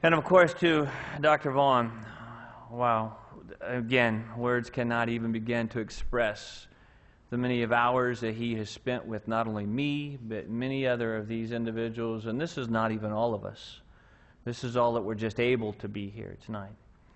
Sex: male